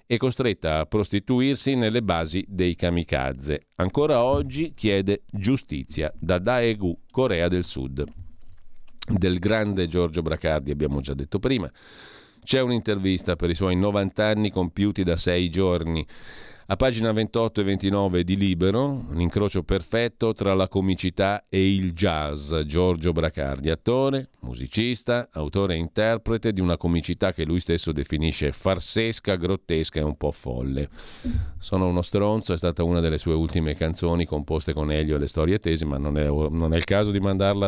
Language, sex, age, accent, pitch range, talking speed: Italian, male, 40-59, native, 80-105 Hz, 155 wpm